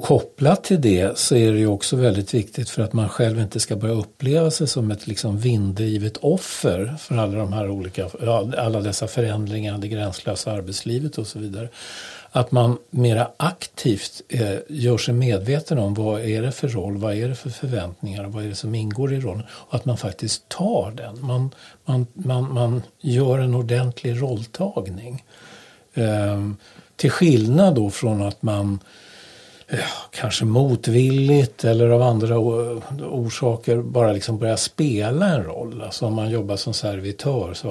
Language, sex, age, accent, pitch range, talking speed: Swedish, male, 60-79, native, 105-130 Hz, 170 wpm